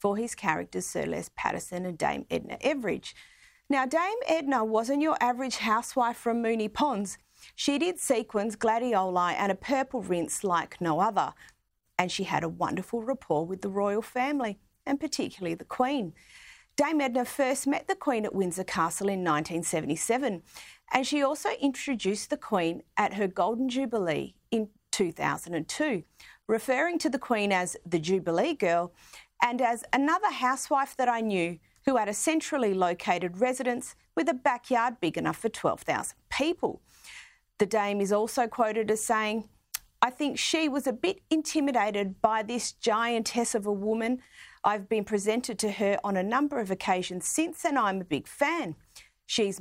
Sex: female